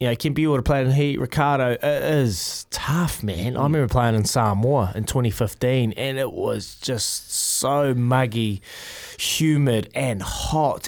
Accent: Australian